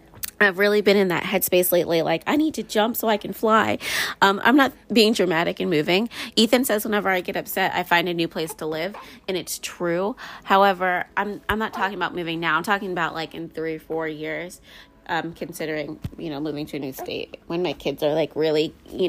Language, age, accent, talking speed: English, 20-39, American, 225 wpm